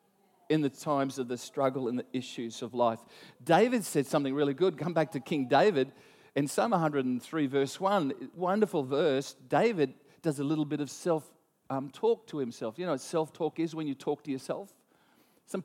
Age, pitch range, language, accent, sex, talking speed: 40-59, 140-185 Hz, English, Australian, male, 190 wpm